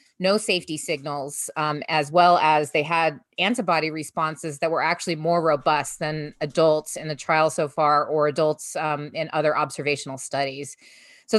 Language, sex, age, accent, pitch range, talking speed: English, female, 30-49, American, 150-170 Hz, 165 wpm